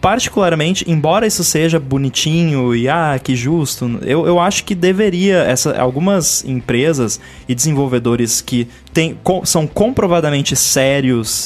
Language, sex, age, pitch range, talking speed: Portuguese, male, 20-39, 120-160 Hz, 115 wpm